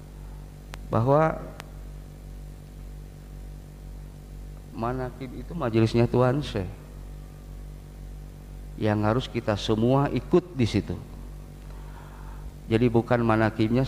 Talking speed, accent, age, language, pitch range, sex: 70 wpm, native, 40-59, Indonesian, 80-130 Hz, male